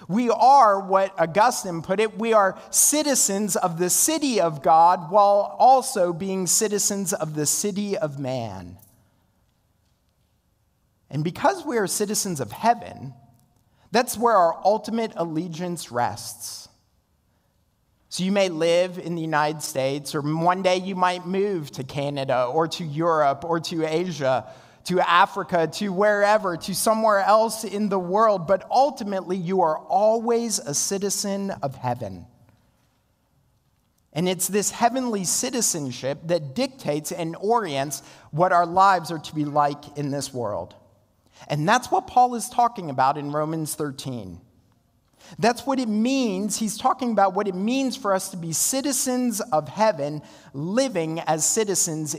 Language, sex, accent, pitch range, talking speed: English, male, American, 145-210 Hz, 145 wpm